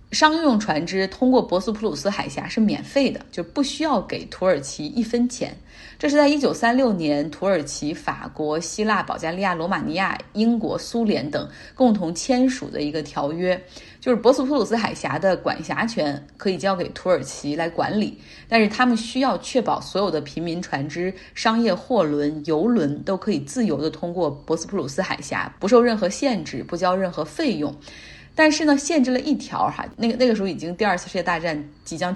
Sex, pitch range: female, 165-240 Hz